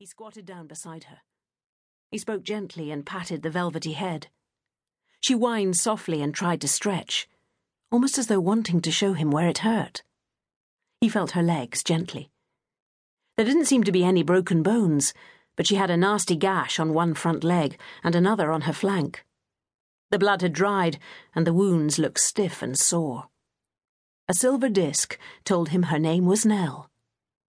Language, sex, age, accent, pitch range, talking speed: English, female, 40-59, British, 160-210 Hz, 170 wpm